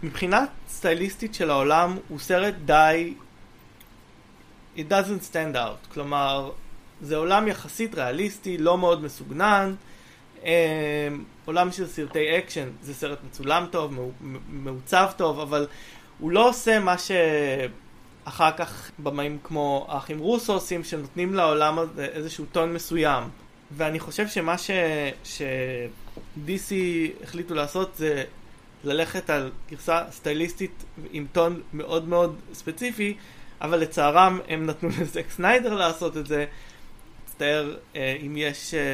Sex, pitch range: male, 140-170 Hz